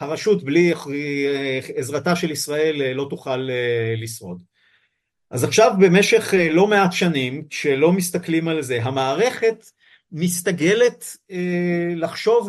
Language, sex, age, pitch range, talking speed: Hebrew, male, 50-69, 135-185 Hz, 100 wpm